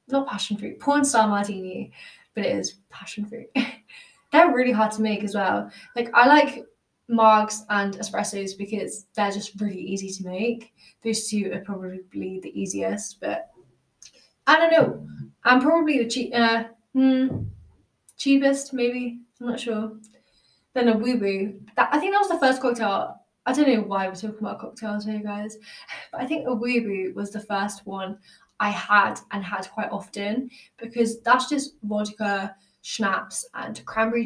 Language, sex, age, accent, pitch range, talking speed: English, female, 10-29, British, 200-245 Hz, 170 wpm